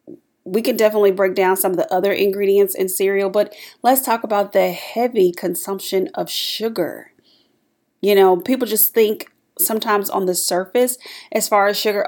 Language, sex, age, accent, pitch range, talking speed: English, female, 30-49, American, 185-240 Hz, 170 wpm